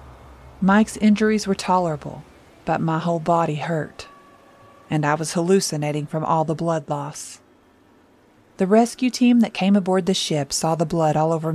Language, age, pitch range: English, 40-59, 155-195 Hz